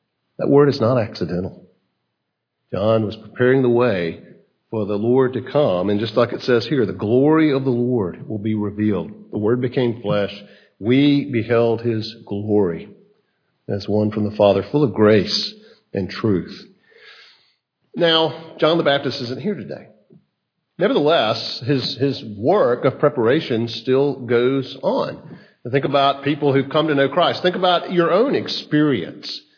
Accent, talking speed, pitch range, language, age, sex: American, 155 wpm, 115-150 Hz, English, 50-69, male